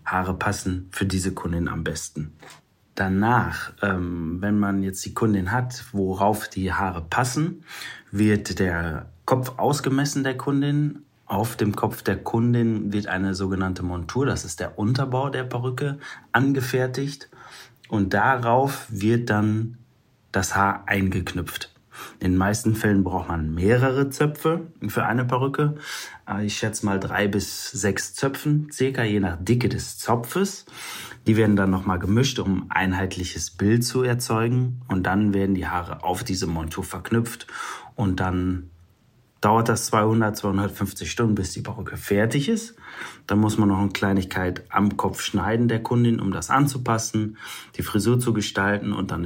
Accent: German